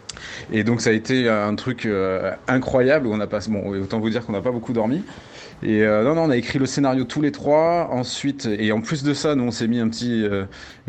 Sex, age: male, 30-49